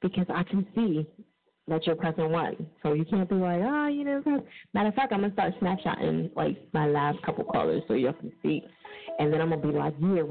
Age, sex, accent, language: 30-49, female, American, English